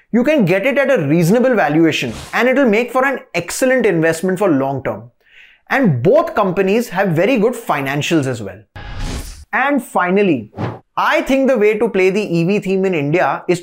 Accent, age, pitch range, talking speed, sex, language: Indian, 20-39, 165-235 Hz, 175 wpm, male, English